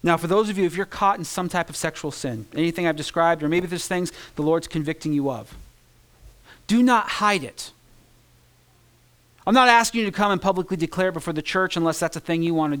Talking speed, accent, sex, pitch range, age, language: 230 wpm, American, male, 165-245 Hz, 40-59, English